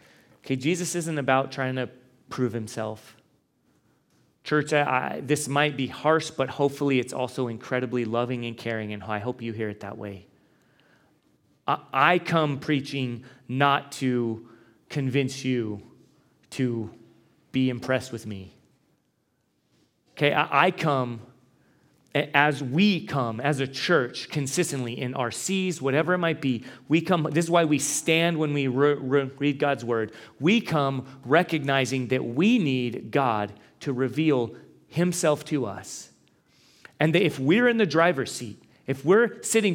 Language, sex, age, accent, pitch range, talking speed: English, male, 30-49, American, 125-165 Hz, 150 wpm